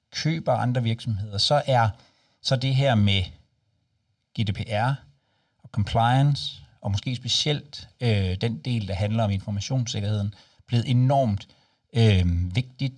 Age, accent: 60-79, native